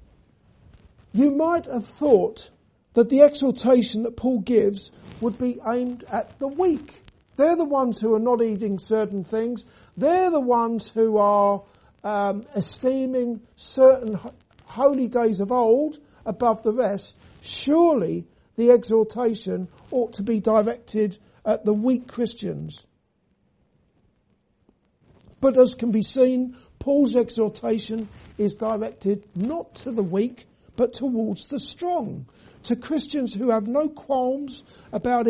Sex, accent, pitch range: male, British, 215-255 Hz